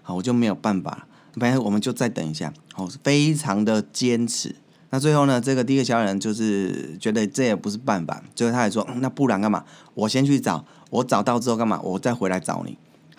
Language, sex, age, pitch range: Chinese, male, 20-39, 105-140 Hz